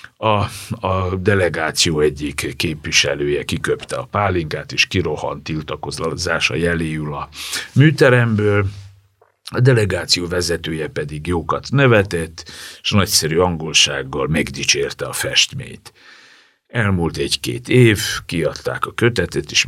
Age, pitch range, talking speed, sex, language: 60-79, 75-105 Hz, 100 wpm, male, Hungarian